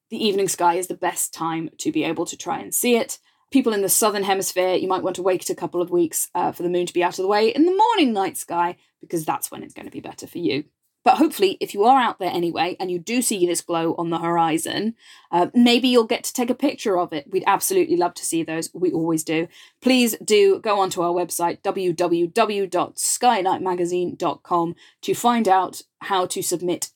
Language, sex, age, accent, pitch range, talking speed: English, female, 20-39, British, 175-245 Hz, 230 wpm